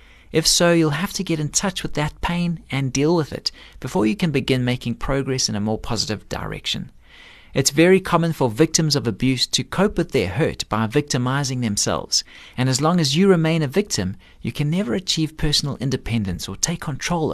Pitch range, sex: 115-160 Hz, male